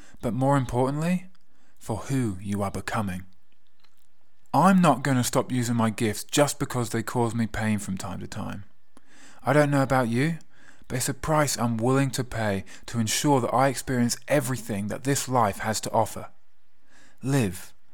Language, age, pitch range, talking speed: English, 20-39, 110-140 Hz, 170 wpm